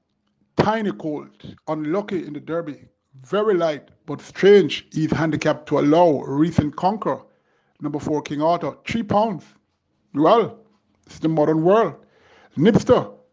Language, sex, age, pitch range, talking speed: English, male, 50-69, 145-190 Hz, 130 wpm